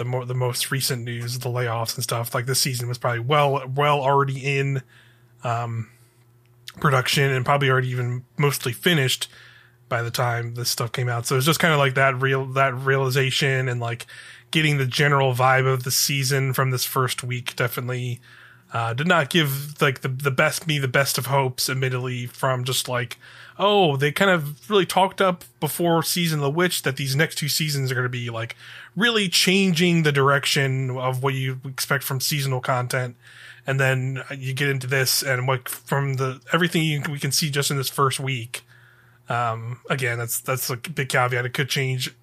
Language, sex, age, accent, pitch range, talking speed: English, male, 20-39, American, 125-145 Hz, 195 wpm